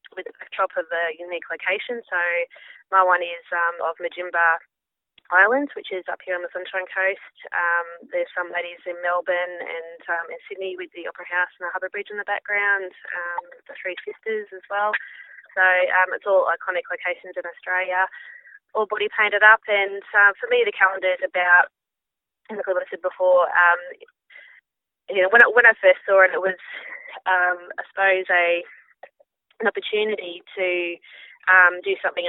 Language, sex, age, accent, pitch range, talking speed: English, female, 20-39, Australian, 170-195 Hz, 180 wpm